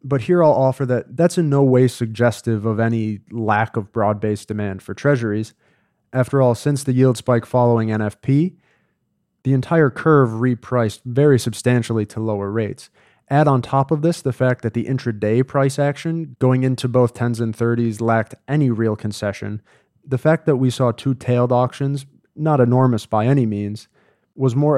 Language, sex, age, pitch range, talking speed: English, male, 20-39, 115-140 Hz, 170 wpm